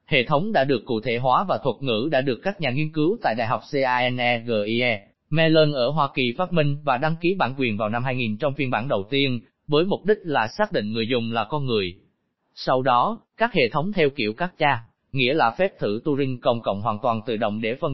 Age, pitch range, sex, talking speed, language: 20-39, 120-165 Hz, male, 240 wpm, Vietnamese